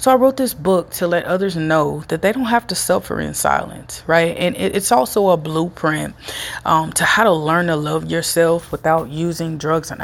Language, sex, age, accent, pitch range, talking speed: English, female, 30-49, American, 155-190 Hz, 210 wpm